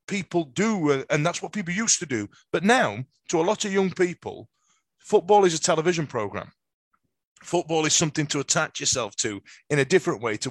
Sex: male